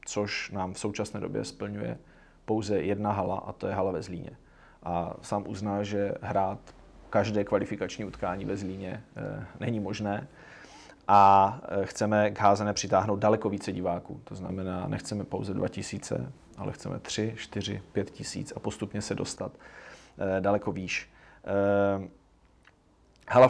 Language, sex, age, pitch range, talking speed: Czech, male, 30-49, 95-110 Hz, 145 wpm